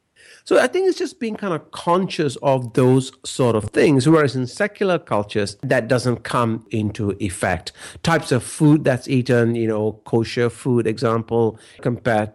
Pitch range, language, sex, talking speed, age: 115-160 Hz, English, male, 165 wpm, 50-69